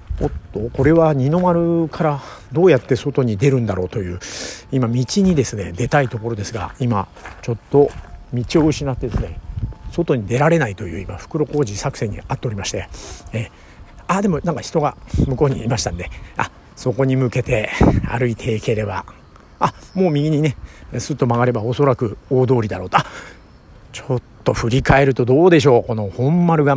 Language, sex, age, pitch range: Japanese, male, 50-69, 115-150 Hz